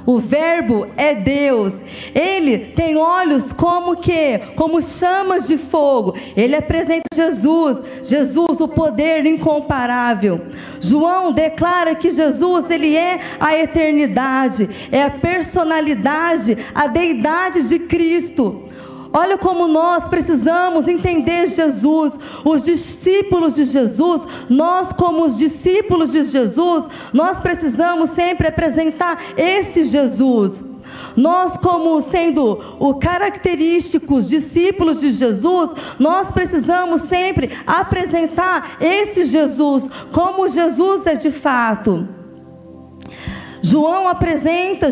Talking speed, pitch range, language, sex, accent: 105 wpm, 280-345 Hz, Portuguese, female, Brazilian